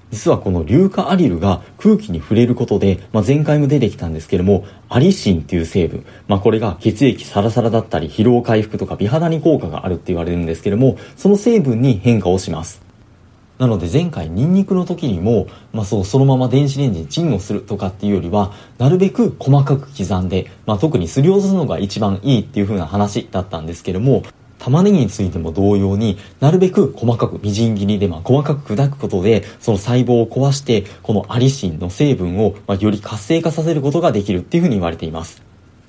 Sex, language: male, Japanese